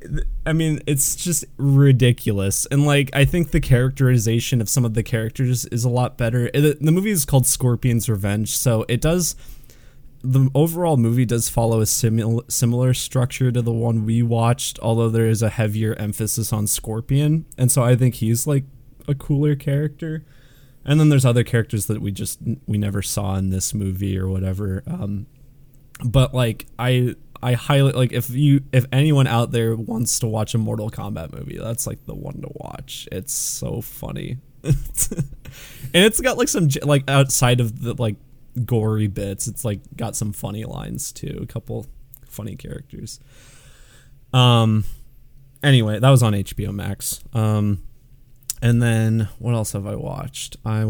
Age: 20-39